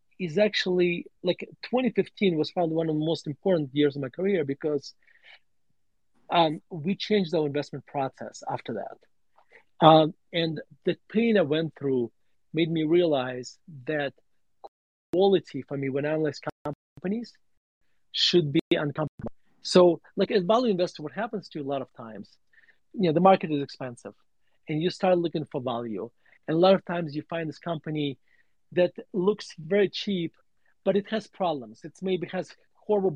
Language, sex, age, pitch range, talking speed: English, male, 40-59, 145-185 Hz, 165 wpm